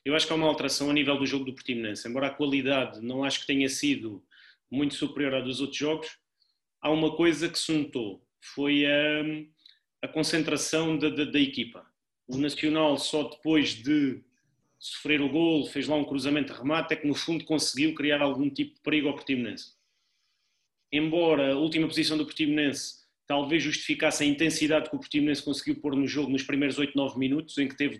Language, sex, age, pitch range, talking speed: Portuguese, male, 30-49, 140-160 Hz, 195 wpm